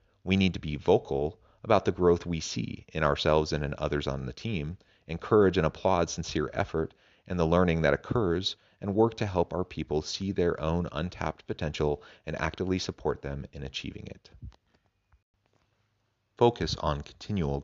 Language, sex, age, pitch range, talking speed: English, male, 40-59, 75-95 Hz, 165 wpm